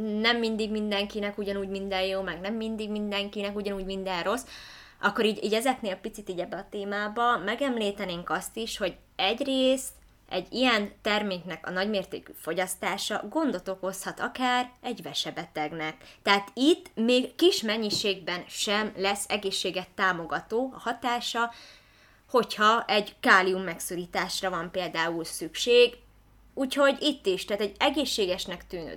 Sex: female